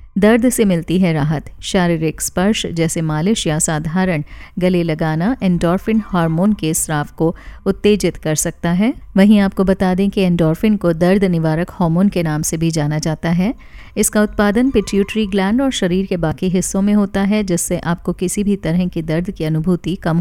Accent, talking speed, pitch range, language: native, 180 wpm, 170-210 Hz, Hindi